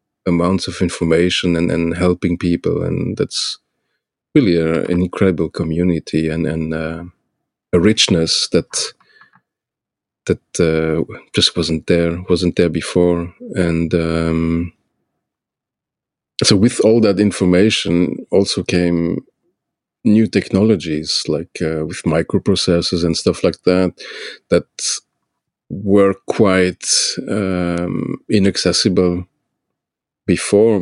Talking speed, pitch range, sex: 105 wpm, 85-100 Hz, male